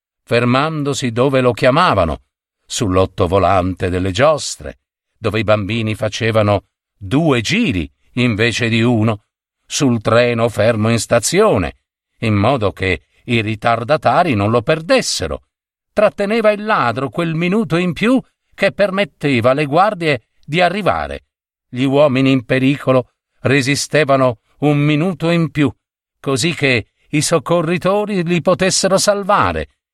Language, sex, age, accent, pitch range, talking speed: Italian, male, 50-69, native, 110-170 Hz, 115 wpm